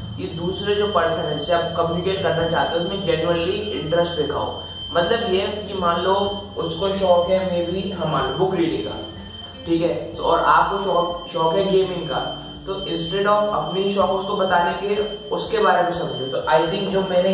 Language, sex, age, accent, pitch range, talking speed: Hindi, male, 20-39, native, 160-195 Hz, 195 wpm